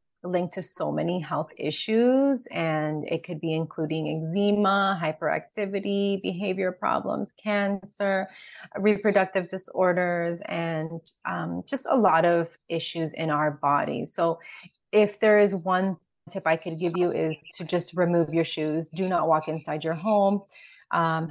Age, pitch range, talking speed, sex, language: 20-39, 165-200 Hz, 145 wpm, female, English